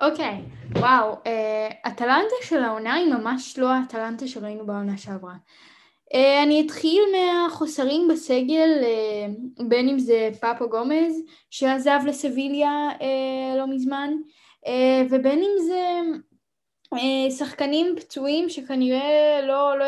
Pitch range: 230-305 Hz